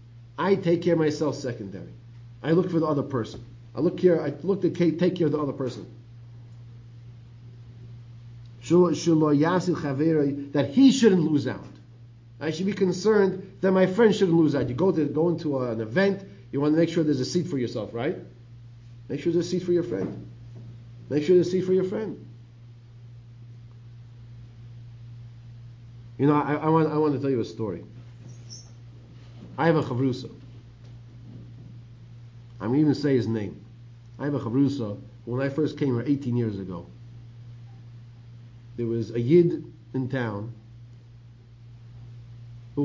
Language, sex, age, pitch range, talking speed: English, male, 50-69, 120-155 Hz, 160 wpm